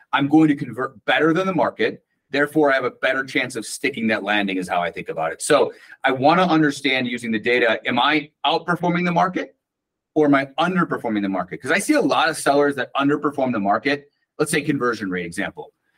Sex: male